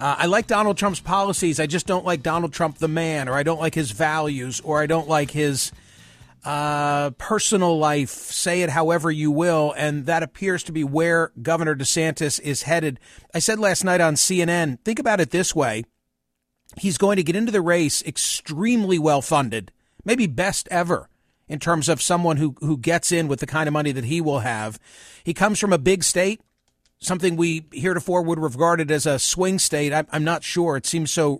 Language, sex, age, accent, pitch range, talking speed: English, male, 40-59, American, 150-185 Hz, 200 wpm